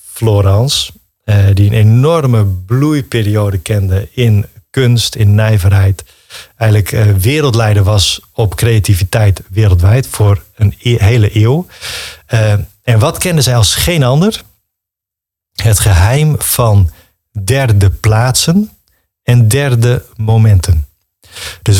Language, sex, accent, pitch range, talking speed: Dutch, male, Dutch, 100-125 Hz, 100 wpm